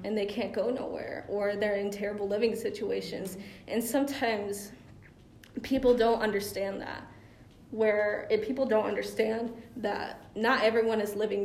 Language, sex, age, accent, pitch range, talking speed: English, female, 20-39, American, 205-230 Hz, 140 wpm